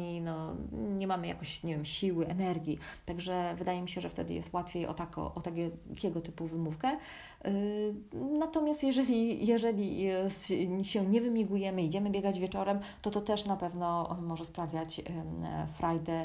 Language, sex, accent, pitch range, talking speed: Polish, female, native, 165-205 Hz, 130 wpm